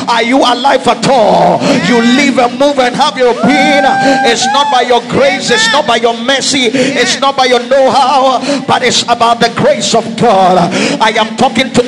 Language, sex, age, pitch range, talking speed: English, male, 50-69, 225-270 Hz, 195 wpm